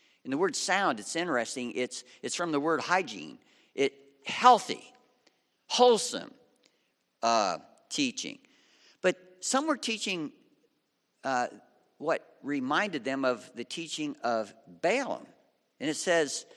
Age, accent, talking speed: 60-79, American, 120 wpm